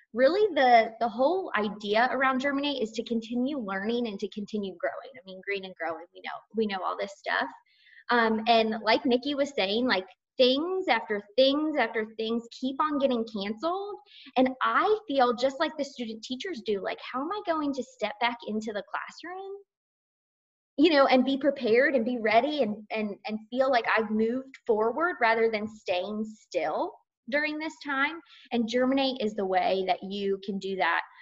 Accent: American